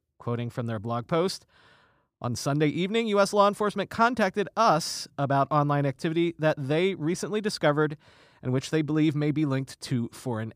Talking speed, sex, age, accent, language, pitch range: 165 wpm, male, 30-49, American, English, 130-170 Hz